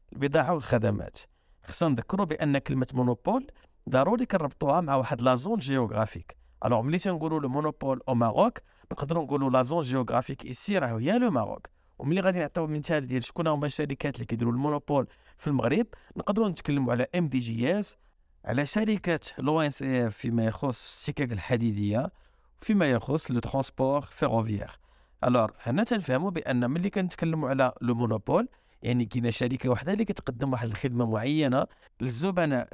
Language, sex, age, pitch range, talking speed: Arabic, male, 50-69, 125-170 Hz, 155 wpm